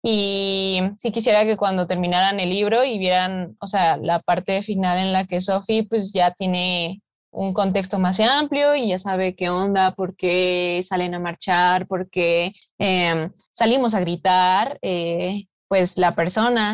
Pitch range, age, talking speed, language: 180-220 Hz, 20-39, 165 wpm, Spanish